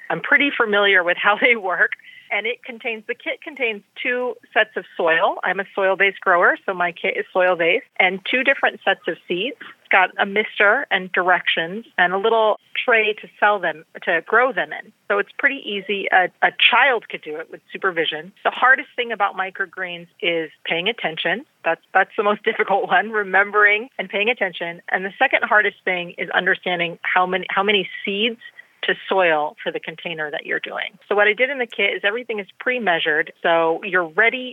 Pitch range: 175-225 Hz